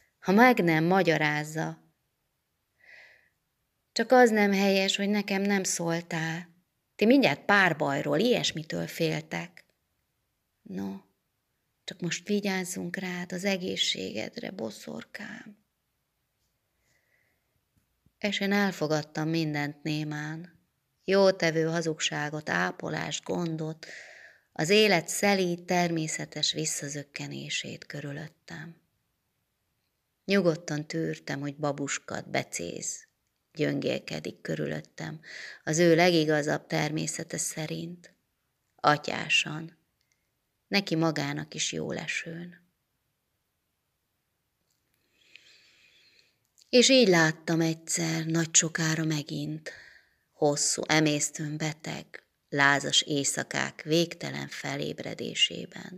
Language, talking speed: Hungarian, 75 wpm